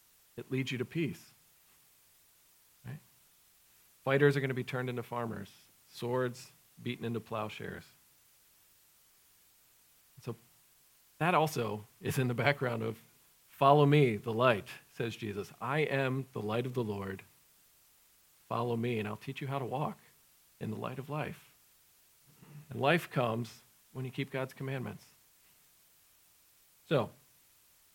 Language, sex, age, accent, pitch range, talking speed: English, male, 40-59, American, 120-145 Hz, 130 wpm